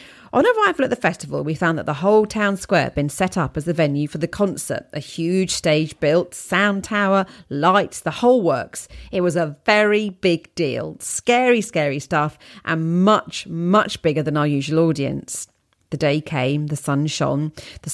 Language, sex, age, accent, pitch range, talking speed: English, female, 40-59, British, 155-195 Hz, 185 wpm